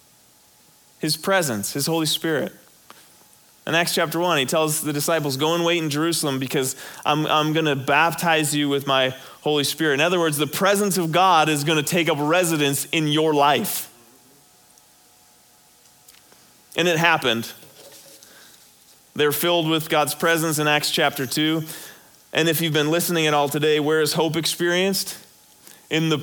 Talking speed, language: 160 wpm, English